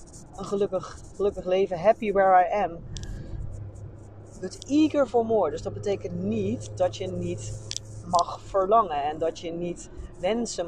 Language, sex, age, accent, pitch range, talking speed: Dutch, female, 30-49, Dutch, 115-195 Hz, 140 wpm